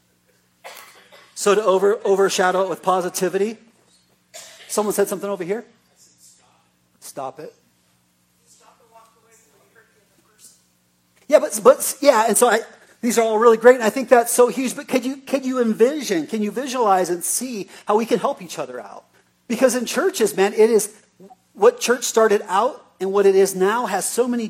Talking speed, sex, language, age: 165 wpm, male, English, 40-59